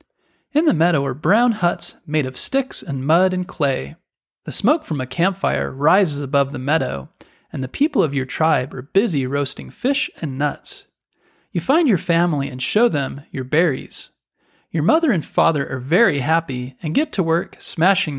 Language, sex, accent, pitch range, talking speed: English, male, American, 140-200 Hz, 180 wpm